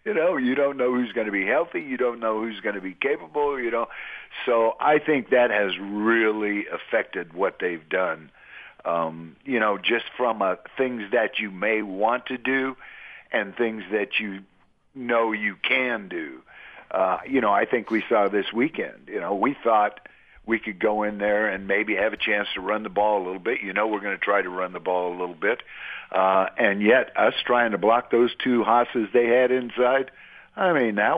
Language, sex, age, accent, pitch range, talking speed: English, male, 50-69, American, 105-125 Hz, 215 wpm